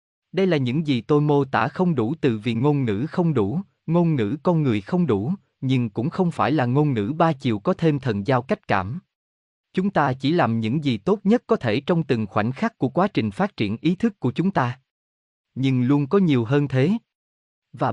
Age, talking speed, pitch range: 20-39, 225 wpm, 110-160 Hz